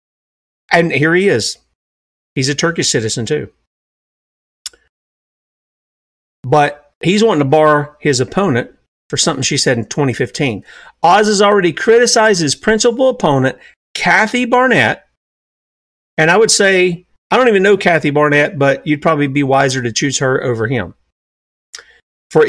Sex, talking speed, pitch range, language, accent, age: male, 140 wpm, 130-205 Hz, English, American, 40-59